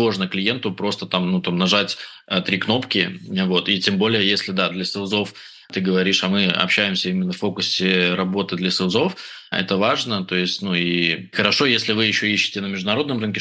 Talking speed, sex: 190 wpm, male